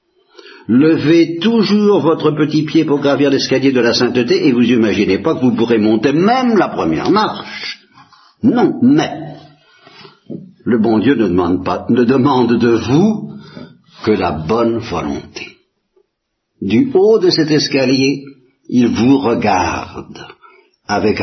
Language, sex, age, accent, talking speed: Italian, male, 60-79, French, 135 wpm